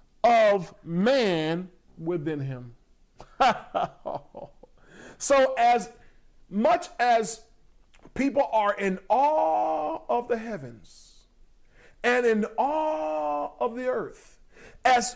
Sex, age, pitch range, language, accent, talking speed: male, 40-59, 175-280 Hz, English, American, 85 wpm